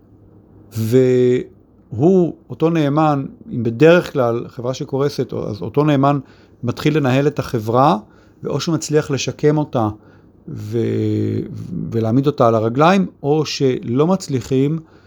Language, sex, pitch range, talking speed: Hebrew, male, 110-155 Hz, 110 wpm